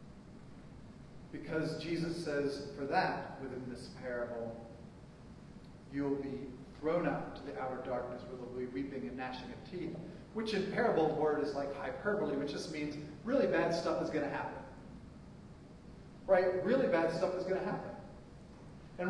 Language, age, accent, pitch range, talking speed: English, 40-59, American, 145-170 Hz, 165 wpm